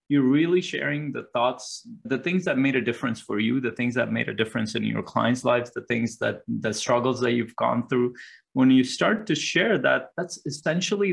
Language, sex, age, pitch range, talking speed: English, male, 20-39, 120-145 Hz, 215 wpm